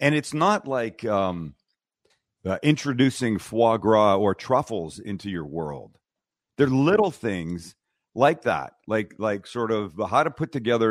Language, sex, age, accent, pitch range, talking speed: English, male, 40-59, American, 95-130 Hz, 150 wpm